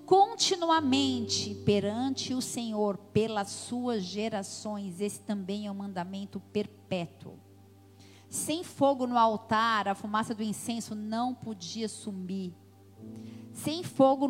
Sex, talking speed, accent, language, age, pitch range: female, 110 wpm, Brazilian, Portuguese, 40-59, 185-235 Hz